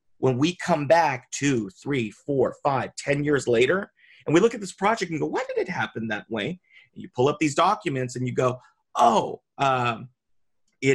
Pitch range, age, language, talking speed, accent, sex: 120-175 Hz, 40-59, English, 210 wpm, American, male